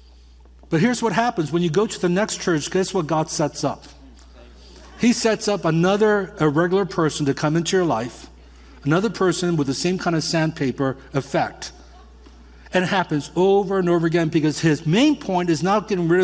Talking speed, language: 190 wpm, English